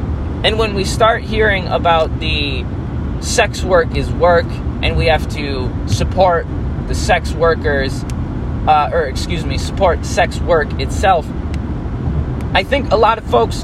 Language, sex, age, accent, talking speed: English, male, 20-39, American, 145 wpm